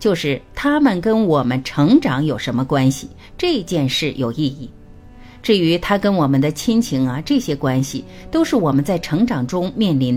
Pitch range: 135-220 Hz